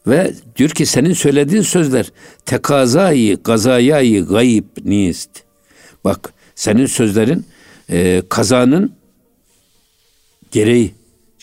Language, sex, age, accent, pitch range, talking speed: Turkish, male, 60-79, native, 105-120 Hz, 85 wpm